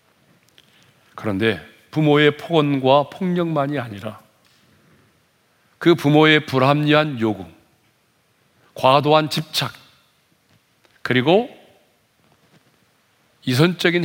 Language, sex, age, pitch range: Korean, male, 40-59, 110-145 Hz